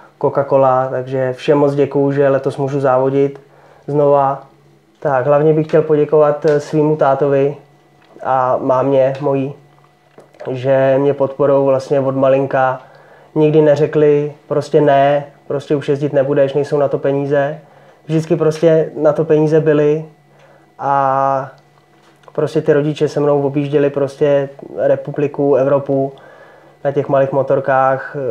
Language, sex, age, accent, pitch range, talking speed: Czech, male, 20-39, native, 130-145 Hz, 125 wpm